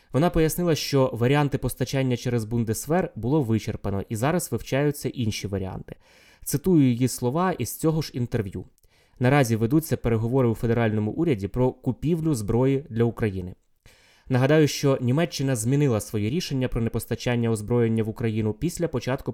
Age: 20-39